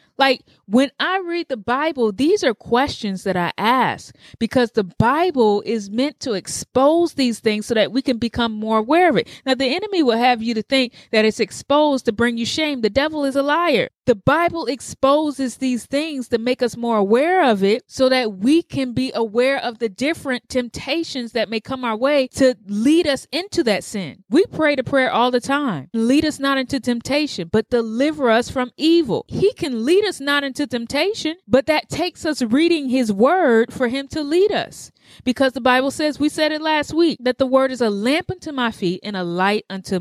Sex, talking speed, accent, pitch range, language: female, 210 wpm, American, 215-280 Hz, English